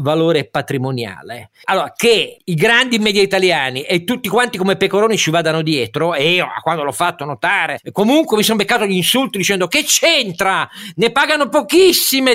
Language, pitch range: Italian, 145-225 Hz